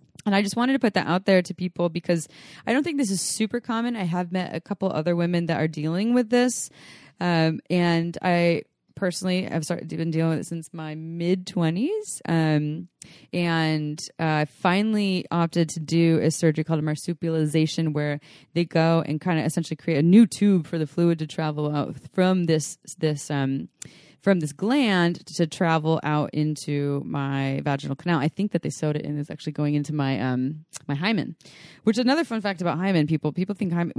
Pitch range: 155-190 Hz